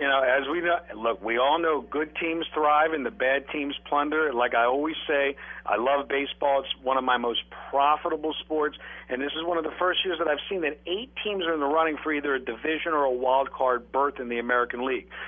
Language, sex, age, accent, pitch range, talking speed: English, male, 50-69, American, 140-165 Hz, 245 wpm